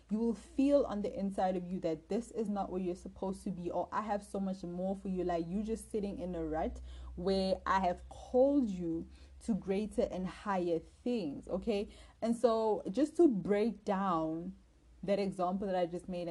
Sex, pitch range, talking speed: female, 170-205 Hz, 200 wpm